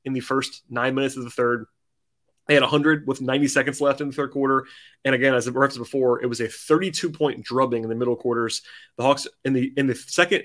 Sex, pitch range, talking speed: male, 125-145 Hz, 235 wpm